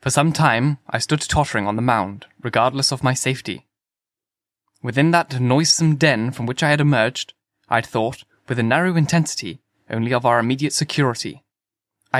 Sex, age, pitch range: male, 10-29, 120-145 Hz